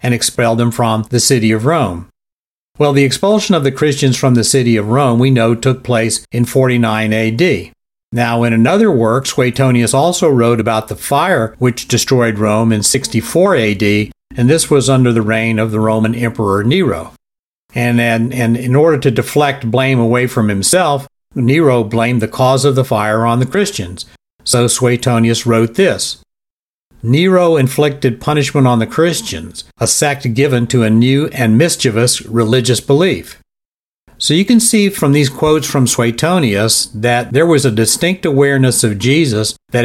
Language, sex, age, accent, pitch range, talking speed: English, male, 50-69, American, 115-140 Hz, 170 wpm